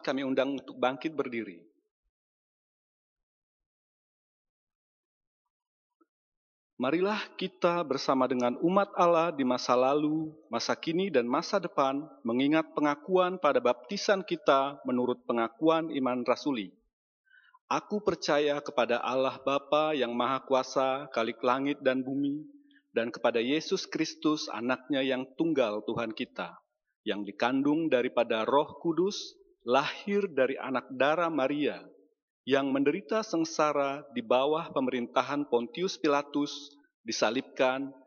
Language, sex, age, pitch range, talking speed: Indonesian, male, 40-59, 130-175 Hz, 105 wpm